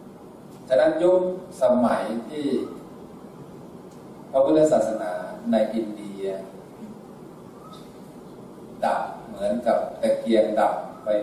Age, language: 30-49, Thai